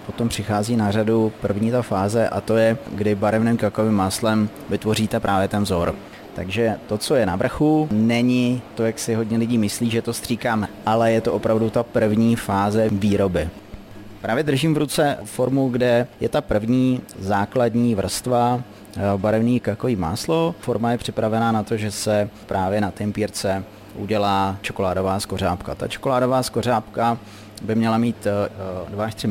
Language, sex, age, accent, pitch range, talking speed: Czech, male, 30-49, native, 100-115 Hz, 155 wpm